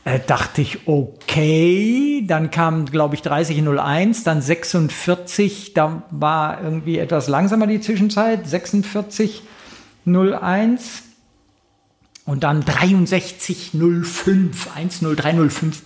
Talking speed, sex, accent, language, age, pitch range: 85 wpm, male, German, German, 50-69, 140-185 Hz